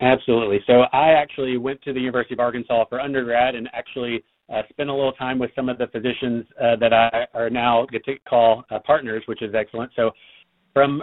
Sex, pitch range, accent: male, 115-130 Hz, American